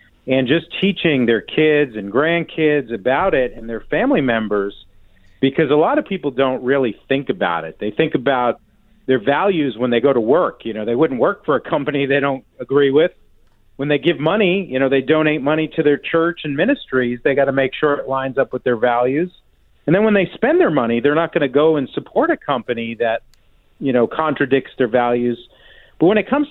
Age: 40-59